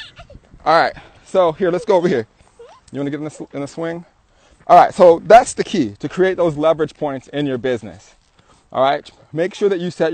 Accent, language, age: American, English, 20-39